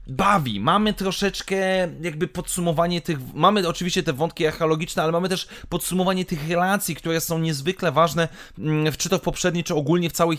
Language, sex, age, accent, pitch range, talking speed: Polish, male, 30-49, native, 140-180 Hz, 170 wpm